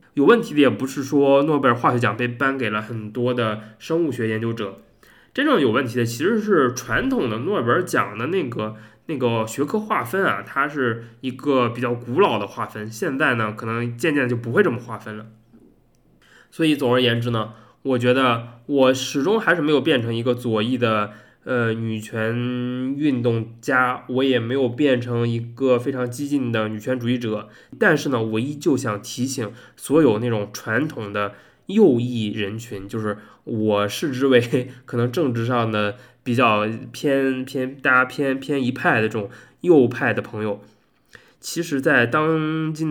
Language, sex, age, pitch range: Chinese, male, 20-39, 110-135 Hz